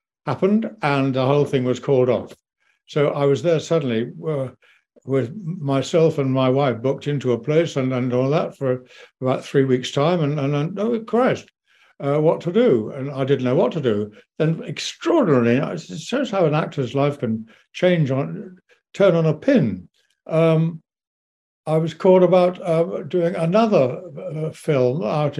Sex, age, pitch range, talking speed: male, 60-79, 135-185 Hz, 175 wpm